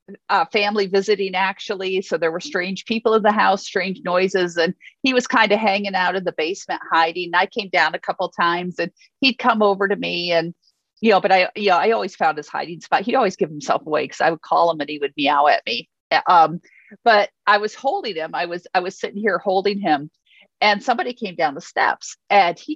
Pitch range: 190-245 Hz